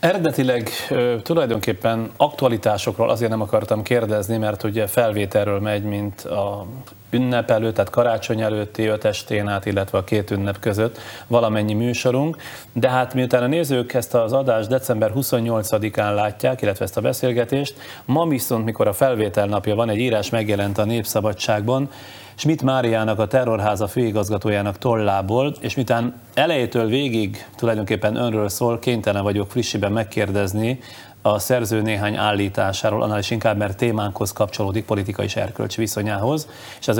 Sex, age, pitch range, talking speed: male, 30-49, 105-120 Hz, 140 wpm